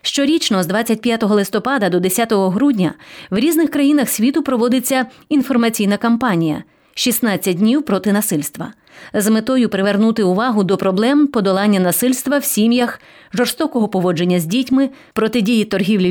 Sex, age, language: female, 30-49, English